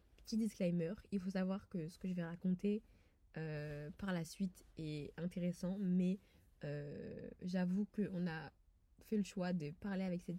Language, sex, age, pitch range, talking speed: French, female, 20-39, 170-195 Hz, 170 wpm